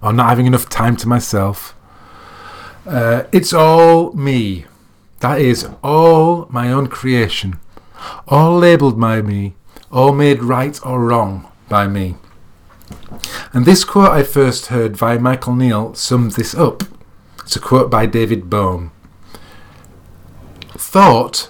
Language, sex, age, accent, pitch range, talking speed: English, male, 40-59, British, 100-145 Hz, 130 wpm